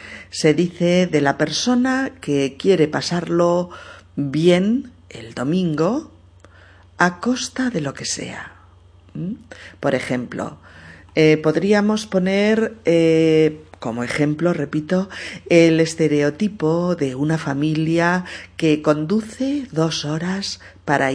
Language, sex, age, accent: Spanish, female, 40-59, Spanish